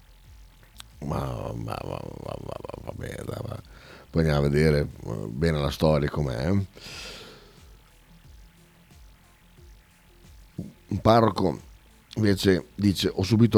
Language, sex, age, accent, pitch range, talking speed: Italian, male, 60-79, native, 85-110 Hz, 100 wpm